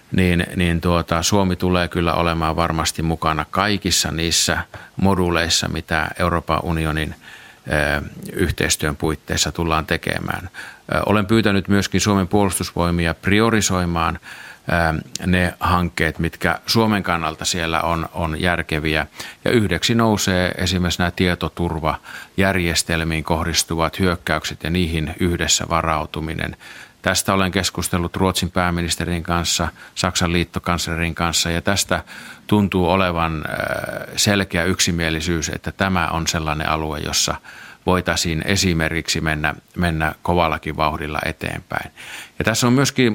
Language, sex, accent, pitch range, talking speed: Finnish, male, native, 80-95 Hz, 110 wpm